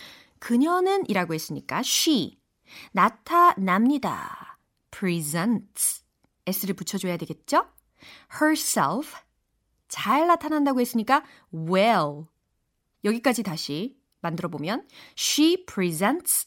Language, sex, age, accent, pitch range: Korean, female, 30-49, native, 175-270 Hz